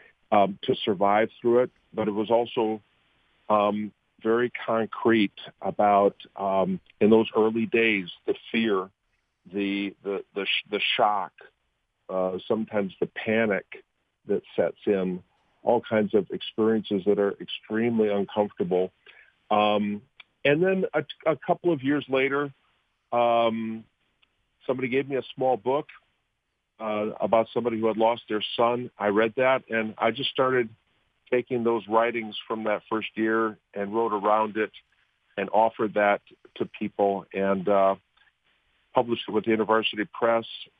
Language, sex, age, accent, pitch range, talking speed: English, male, 50-69, American, 105-120 Hz, 140 wpm